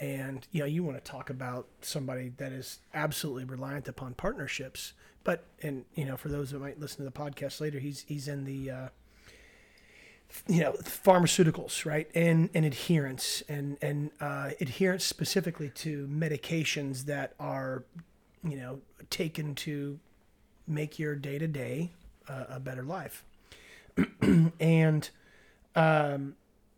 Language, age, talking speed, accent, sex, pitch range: English, 30-49, 140 wpm, American, male, 140-160 Hz